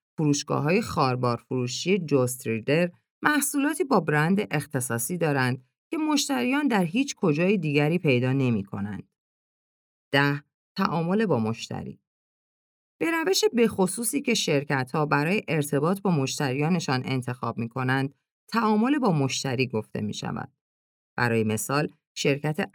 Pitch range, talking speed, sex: 130-195 Hz, 120 wpm, female